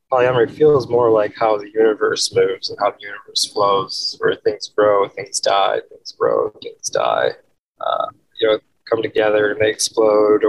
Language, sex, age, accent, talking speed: English, male, 20-39, American, 170 wpm